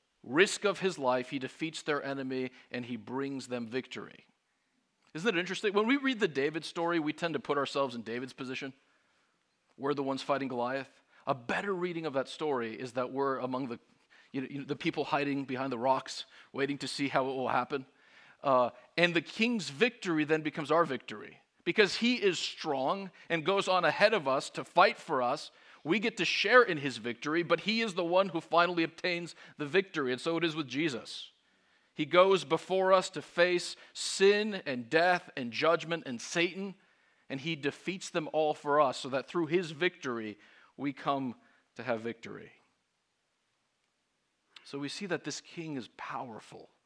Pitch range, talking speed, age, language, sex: 135-180 Hz, 190 wpm, 40-59, English, male